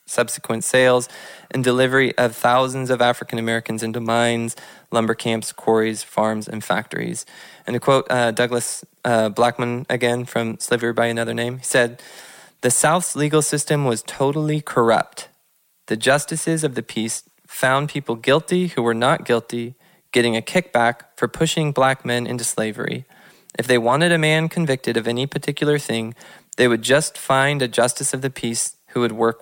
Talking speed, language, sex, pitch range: 165 wpm, English, male, 115-140 Hz